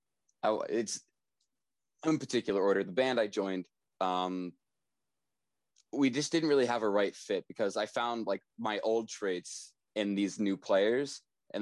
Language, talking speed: English, 155 wpm